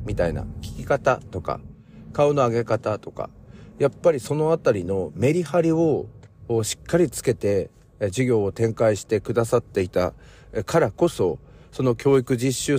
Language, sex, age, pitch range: Japanese, male, 40-59, 100-140 Hz